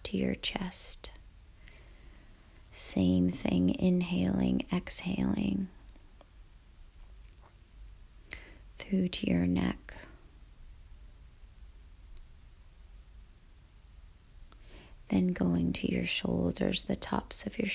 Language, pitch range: English, 75-110 Hz